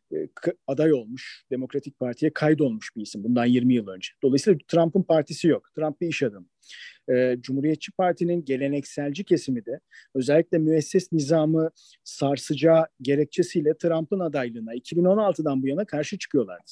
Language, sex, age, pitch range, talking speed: Turkish, male, 50-69, 130-170 Hz, 135 wpm